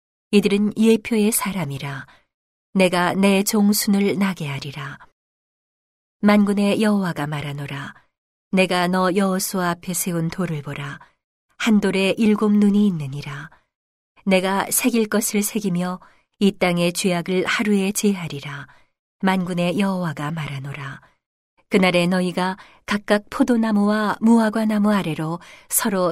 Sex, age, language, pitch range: female, 40-59, Korean, 170-210 Hz